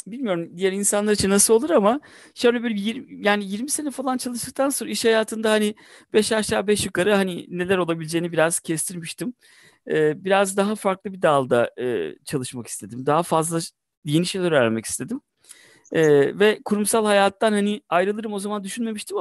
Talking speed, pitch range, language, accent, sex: 155 wpm, 150-215 Hz, Turkish, native, male